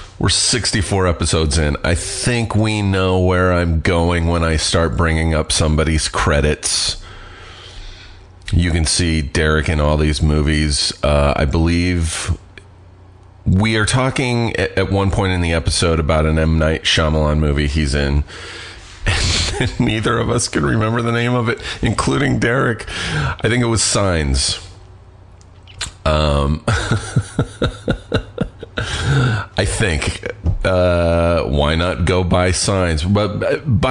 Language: English